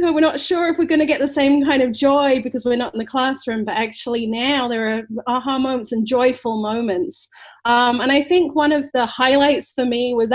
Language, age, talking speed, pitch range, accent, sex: English, 30-49, 230 wpm, 225-280 Hz, Australian, female